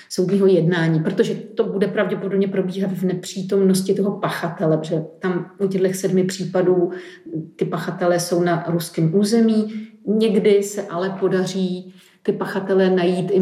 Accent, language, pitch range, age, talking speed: native, Czech, 175-215 Hz, 40-59, 140 wpm